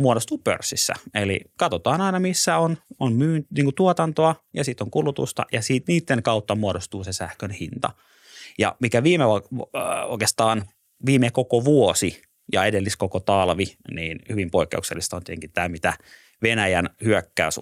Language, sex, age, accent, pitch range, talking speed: Finnish, male, 30-49, native, 90-125 Hz, 150 wpm